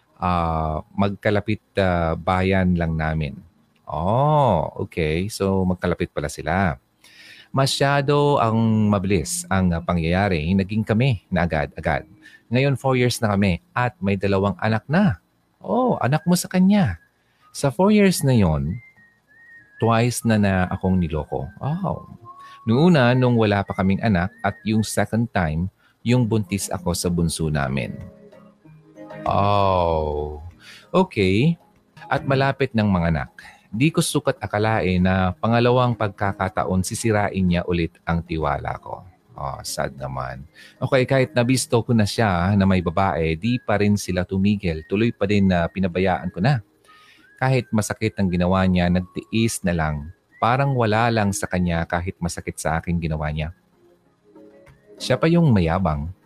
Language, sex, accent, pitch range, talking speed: Filipino, male, native, 85-120 Hz, 140 wpm